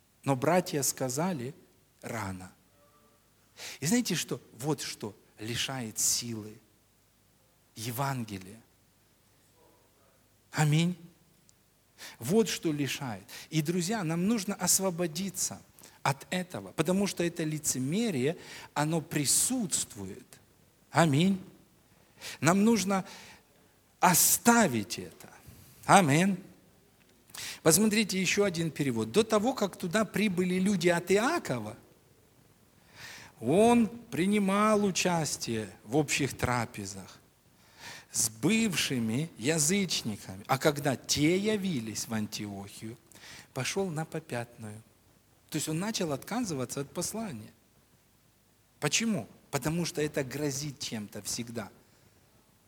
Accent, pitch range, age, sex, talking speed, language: native, 115-185 Hz, 50-69, male, 90 wpm, Russian